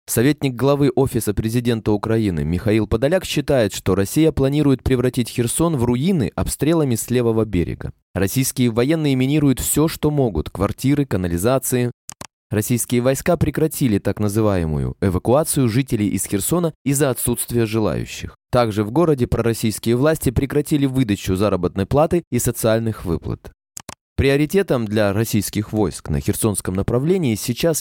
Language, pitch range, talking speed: Russian, 105-140 Hz, 125 wpm